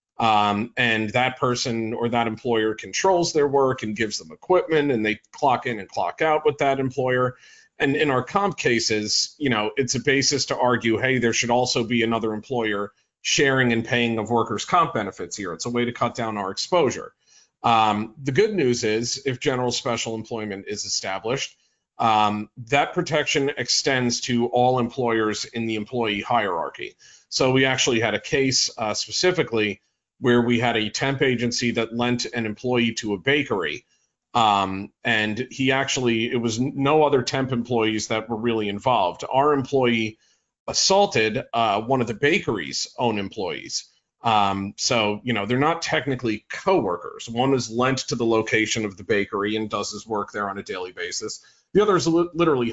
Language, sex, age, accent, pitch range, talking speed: English, male, 40-59, American, 110-135 Hz, 180 wpm